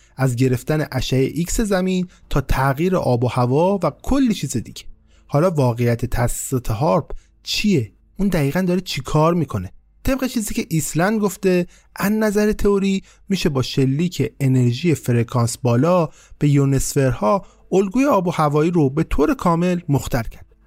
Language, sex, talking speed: Persian, male, 150 wpm